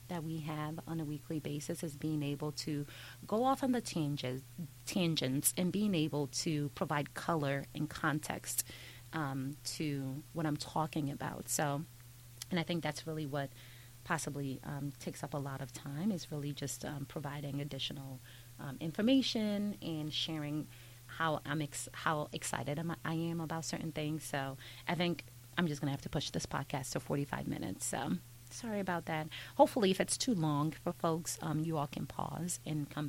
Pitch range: 135-175 Hz